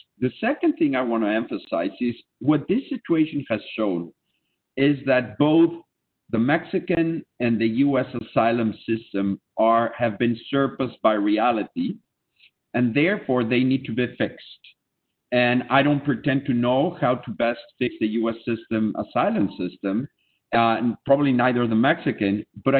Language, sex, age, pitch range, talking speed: English, male, 50-69, 115-140 Hz, 155 wpm